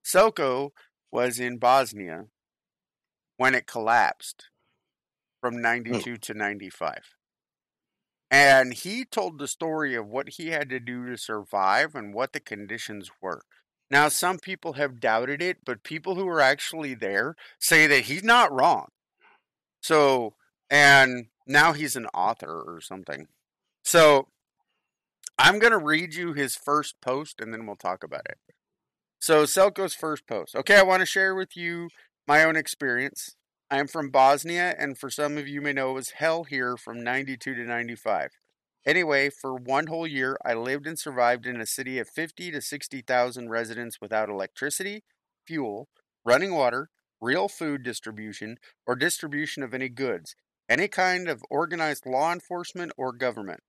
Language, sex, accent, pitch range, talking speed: English, male, American, 125-160 Hz, 155 wpm